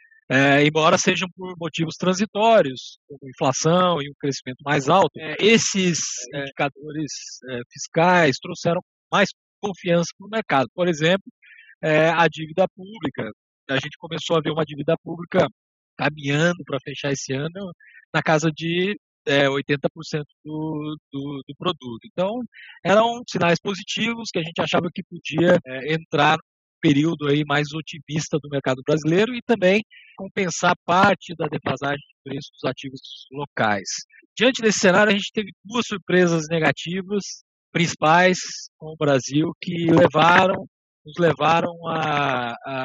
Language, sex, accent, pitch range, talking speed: Portuguese, male, Brazilian, 145-185 Hz, 130 wpm